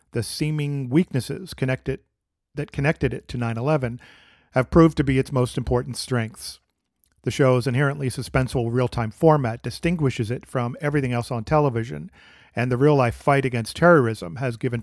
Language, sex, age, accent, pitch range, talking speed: English, male, 50-69, American, 115-140 Hz, 155 wpm